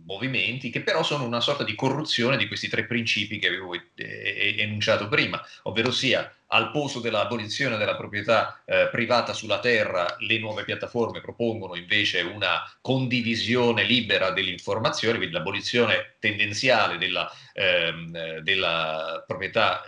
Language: Italian